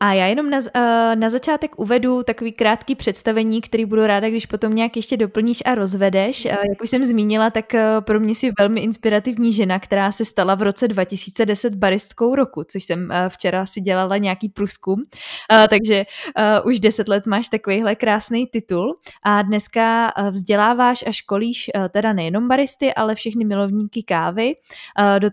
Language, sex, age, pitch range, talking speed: Czech, female, 20-39, 205-235 Hz, 160 wpm